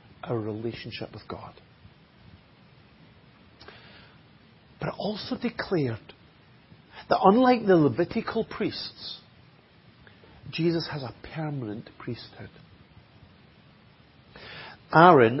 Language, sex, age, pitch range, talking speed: English, male, 40-59, 120-190 Hz, 75 wpm